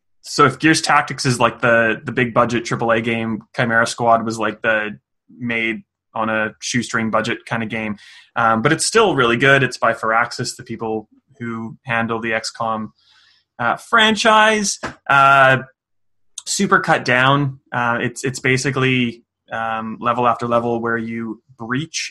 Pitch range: 110-125 Hz